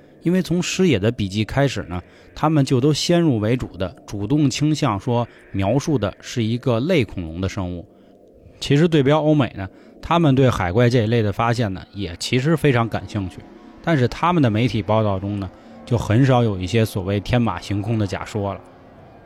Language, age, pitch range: Chinese, 20-39, 100-125 Hz